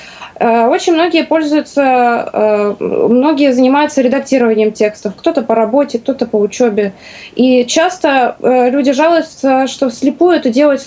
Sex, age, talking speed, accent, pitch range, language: female, 20-39, 115 wpm, native, 235-285 Hz, Russian